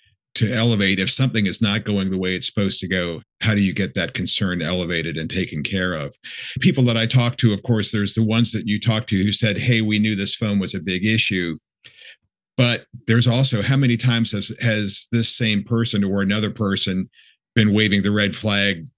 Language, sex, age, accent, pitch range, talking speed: English, male, 50-69, American, 95-115 Hz, 215 wpm